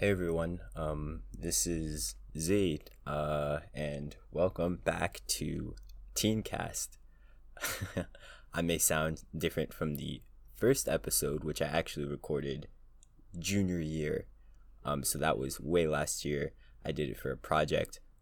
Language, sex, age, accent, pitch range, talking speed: English, male, 20-39, American, 75-85 Hz, 130 wpm